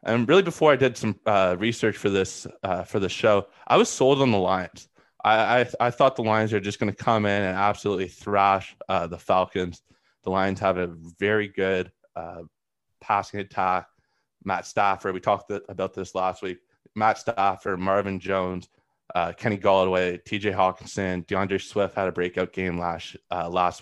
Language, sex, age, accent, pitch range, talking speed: English, male, 20-39, American, 95-115 Hz, 185 wpm